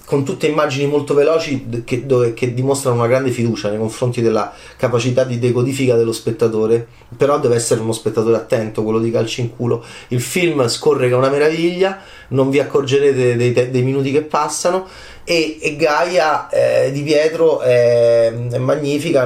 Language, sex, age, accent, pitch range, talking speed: Italian, male, 30-49, native, 120-155 Hz, 170 wpm